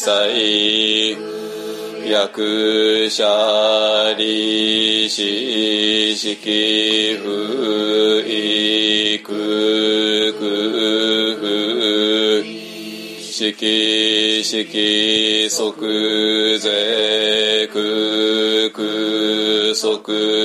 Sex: male